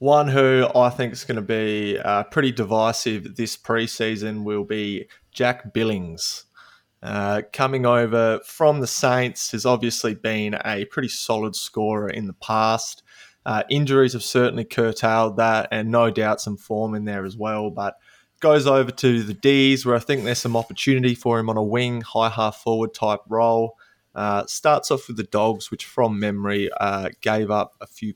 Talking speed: 180 wpm